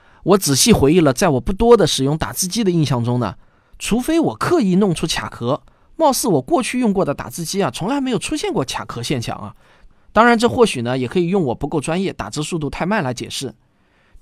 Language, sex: Chinese, male